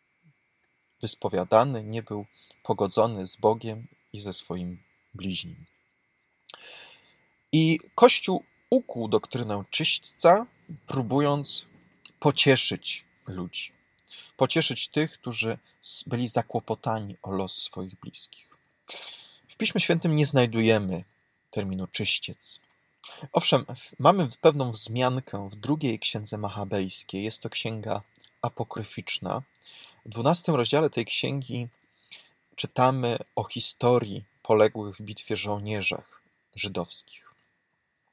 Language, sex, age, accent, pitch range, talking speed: Polish, male, 20-39, native, 100-130 Hz, 95 wpm